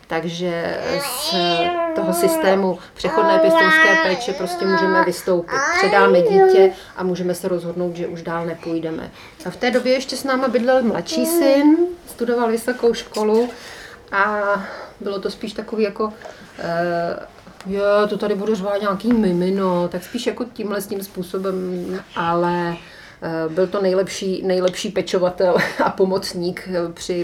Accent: native